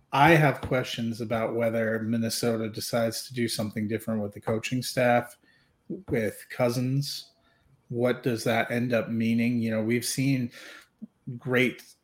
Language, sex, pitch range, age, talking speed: English, male, 110-130 Hz, 30-49, 140 wpm